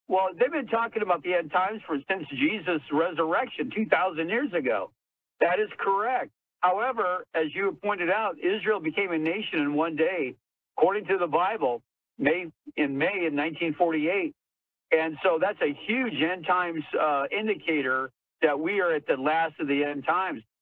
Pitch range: 150-195 Hz